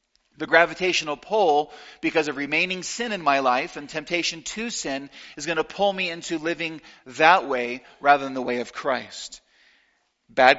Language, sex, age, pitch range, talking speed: English, male, 40-59, 145-200 Hz, 170 wpm